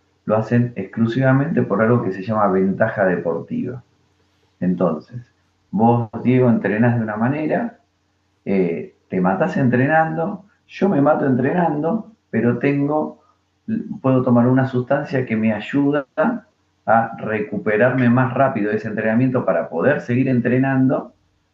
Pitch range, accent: 95-130 Hz, Argentinian